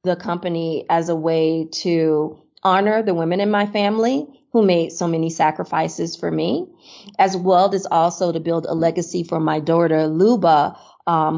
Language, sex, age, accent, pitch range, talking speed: English, female, 30-49, American, 165-200 Hz, 170 wpm